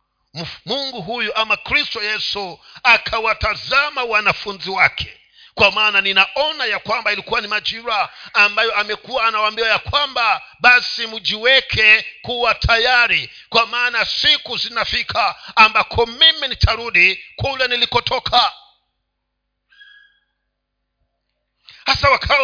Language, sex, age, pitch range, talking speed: Swahili, male, 50-69, 210-270 Hz, 95 wpm